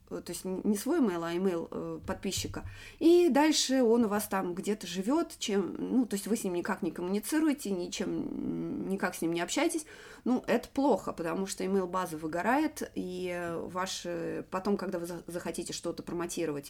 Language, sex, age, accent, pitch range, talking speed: Russian, female, 20-39, native, 175-225 Hz, 170 wpm